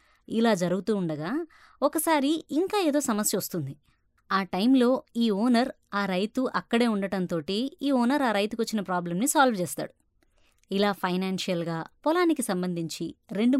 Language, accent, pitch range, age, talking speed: Telugu, native, 190-270 Hz, 20-39, 130 wpm